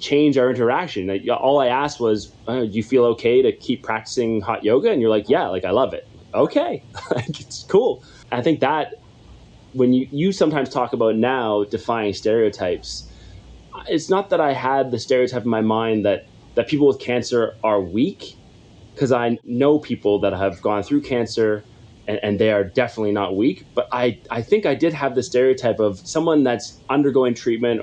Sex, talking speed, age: male, 190 wpm, 20-39